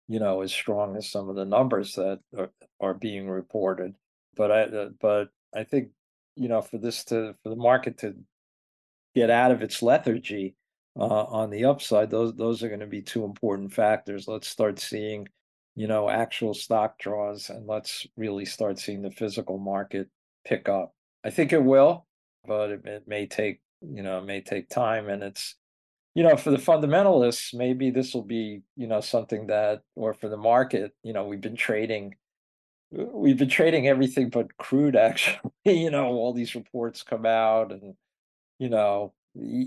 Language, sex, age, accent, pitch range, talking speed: English, male, 50-69, American, 100-120 Hz, 185 wpm